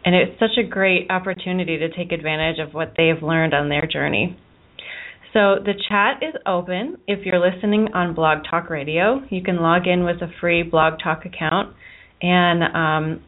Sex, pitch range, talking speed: female, 170-215 Hz, 180 wpm